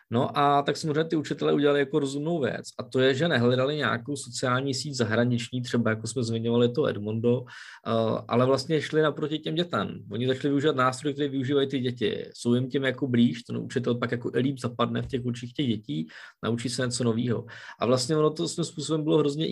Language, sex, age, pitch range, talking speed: Czech, male, 20-39, 115-135 Hz, 210 wpm